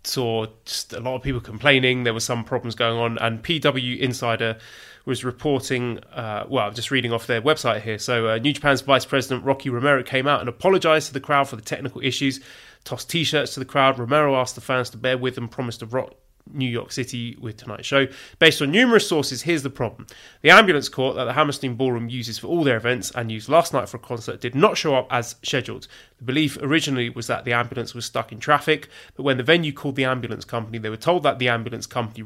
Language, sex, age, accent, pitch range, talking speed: English, male, 30-49, British, 120-145 Hz, 235 wpm